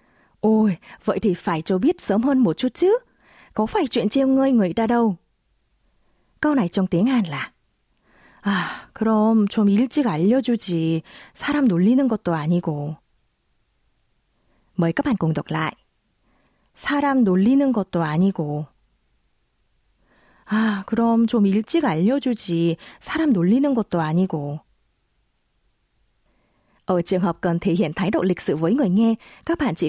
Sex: female